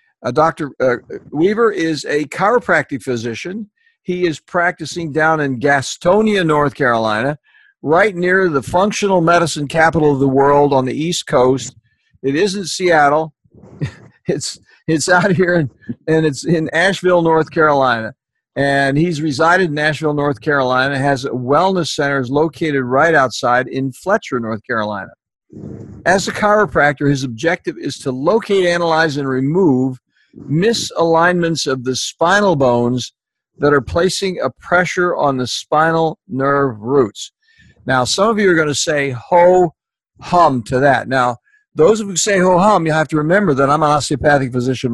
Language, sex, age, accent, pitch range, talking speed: English, male, 60-79, American, 135-180 Hz, 150 wpm